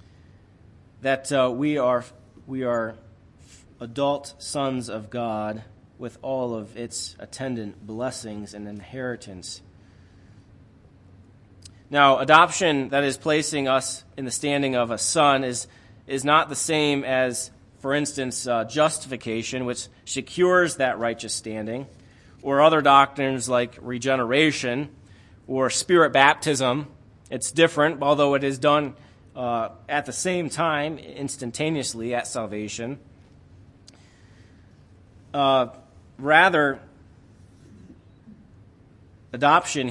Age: 30-49